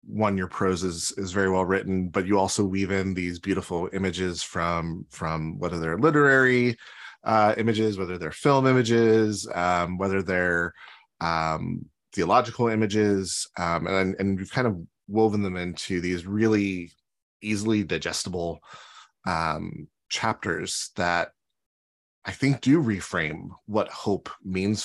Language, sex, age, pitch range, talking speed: English, male, 30-49, 90-110 Hz, 140 wpm